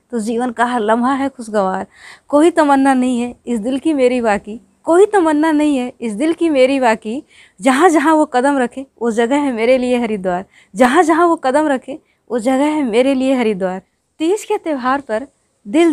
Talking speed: 195 wpm